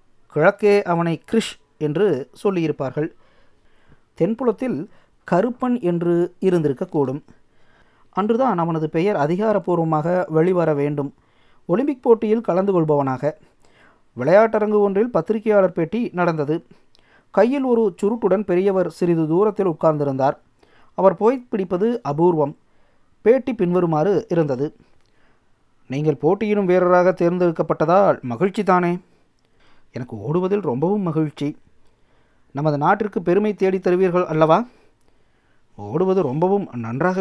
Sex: male